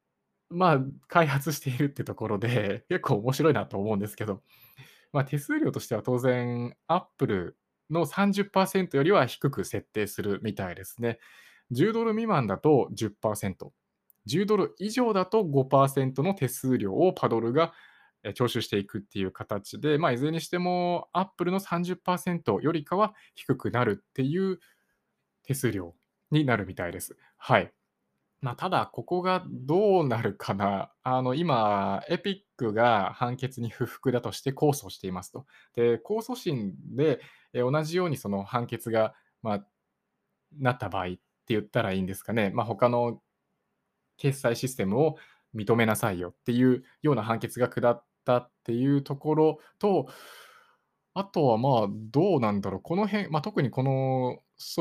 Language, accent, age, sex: Japanese, native, 20-39, male